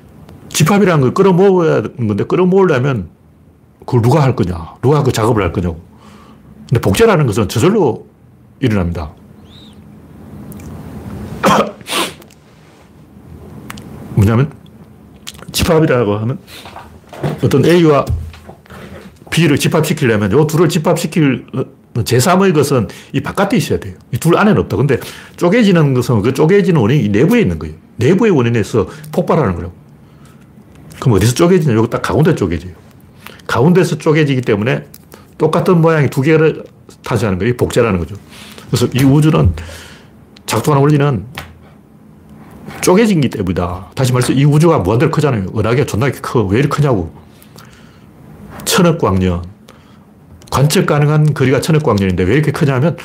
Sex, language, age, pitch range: male, Korean, 60-79, 100-155 Hz